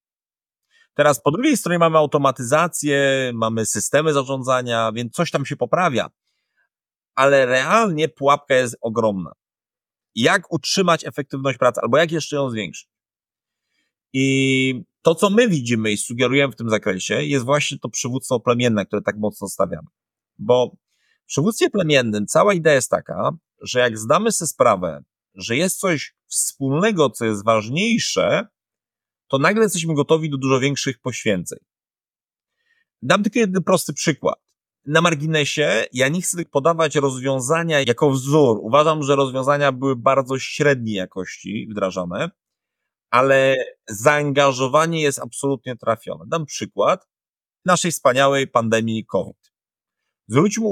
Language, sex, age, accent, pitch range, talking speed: Polish, male, 30-49, native, 125-165 Hz, 130 wpm